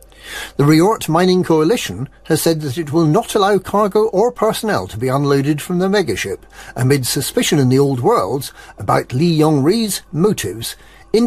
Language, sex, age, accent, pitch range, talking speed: English, male, 50-69, British, 130-185 Hz, 165 wpm